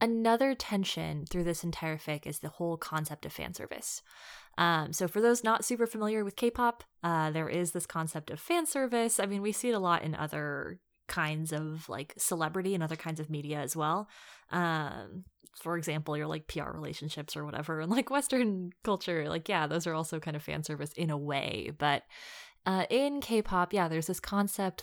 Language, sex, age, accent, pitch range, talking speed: English, female, 20-39, American, 160-210 Hz, 190 wpm